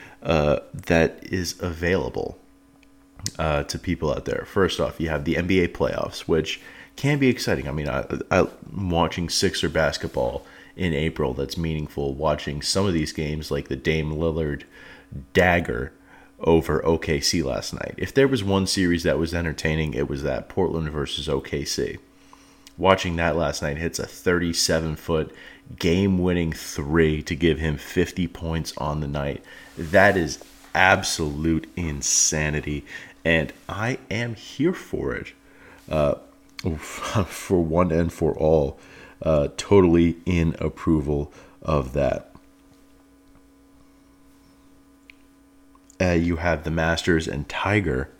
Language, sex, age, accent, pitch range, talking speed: English, male, 30-49, American, 75-90 Hz, 130 wpm